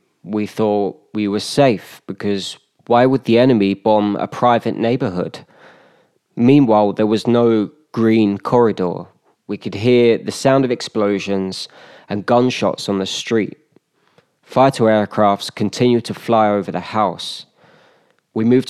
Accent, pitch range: British, 100-120 Hz